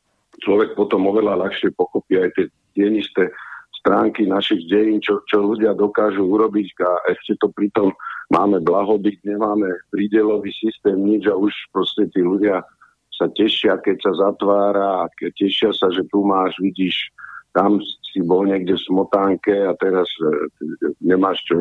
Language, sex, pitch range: Slovak, male, 95-110 Hz